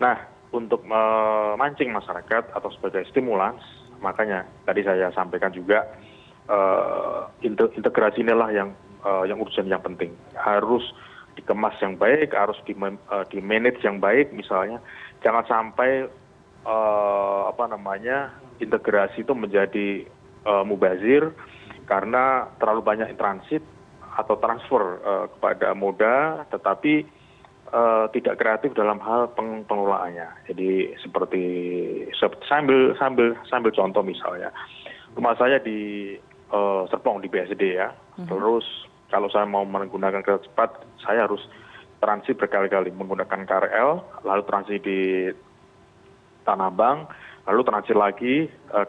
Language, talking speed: Indonesian, 120 wpm